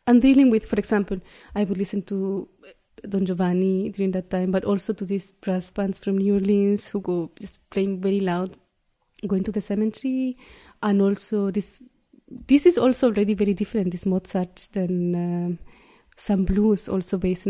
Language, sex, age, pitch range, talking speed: English, female, 20-39, 195-245 Hz, 170 wpm